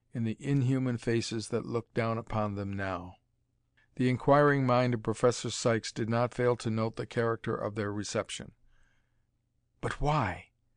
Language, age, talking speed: English, 50-69, 155 wpm